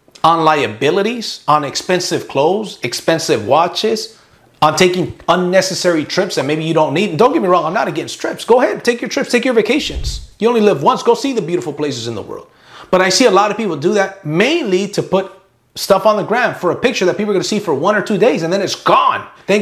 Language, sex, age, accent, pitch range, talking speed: English, male, 30-49, American, 160-210 Hz, 240 wpm